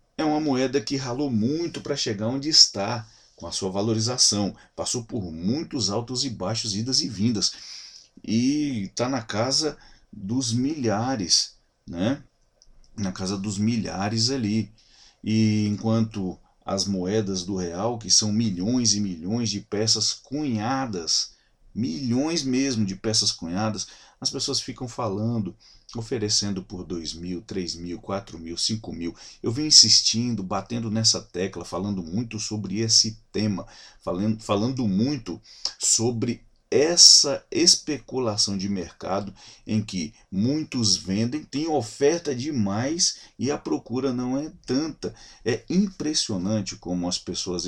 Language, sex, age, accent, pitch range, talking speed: Portuguese, male, 40-59, Brazilian, 95-130 Hz, 130 wpm